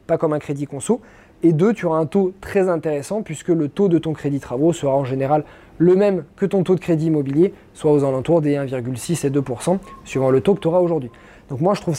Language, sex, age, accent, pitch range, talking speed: French, male, 20-39, French, 160-205 Hz, 240 wpm